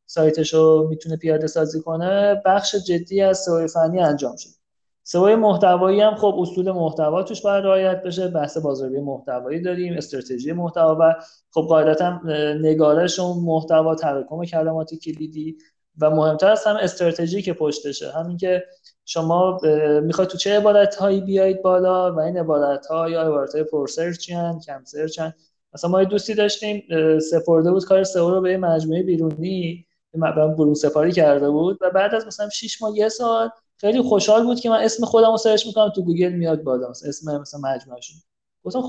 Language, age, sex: Persian, 30-49, male